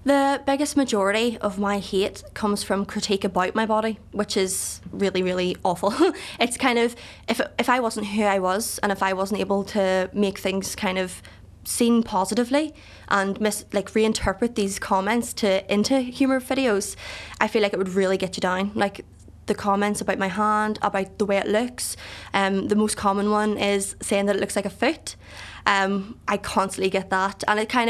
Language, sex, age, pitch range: English, female, 20-39, 195-225 Hz